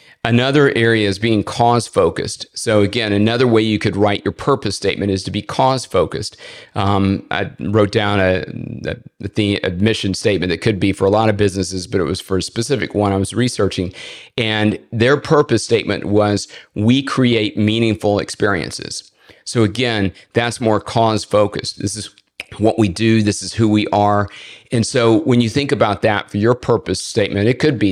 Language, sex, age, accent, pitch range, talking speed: English, male, 50-69, American, 100-115 Hz, 190 wpm